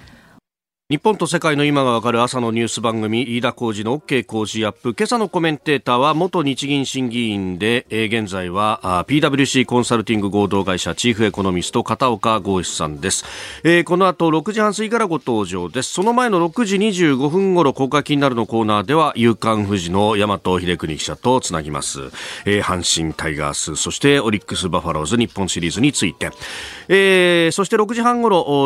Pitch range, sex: 105-160 Hz, male